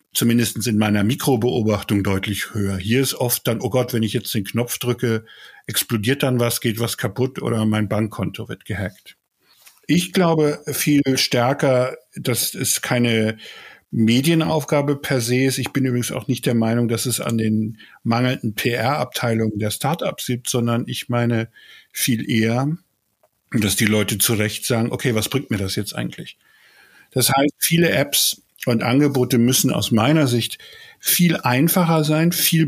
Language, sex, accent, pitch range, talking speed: German, male, German, 115-140 Hz, 160 wpm